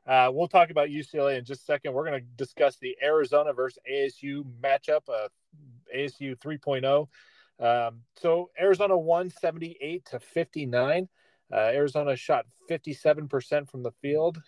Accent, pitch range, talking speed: American, 125-150 Hz, 145 wpm